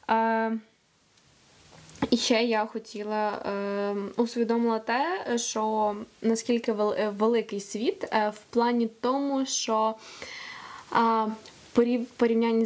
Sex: female